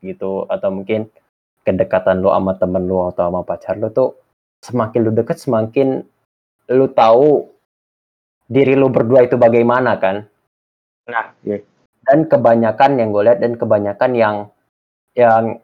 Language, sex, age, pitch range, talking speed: Indonesian, male, 20-39, 105-125 Hz, 135 wpm